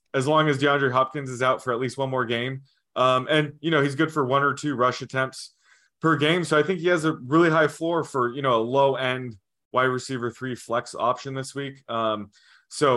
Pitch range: 120-145 Hz